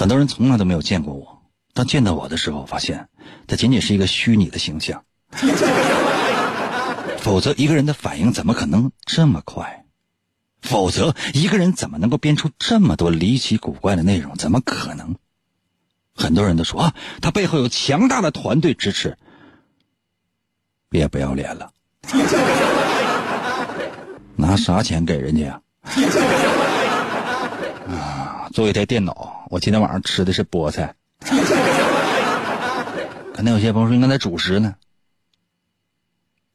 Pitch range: 85-130 Hz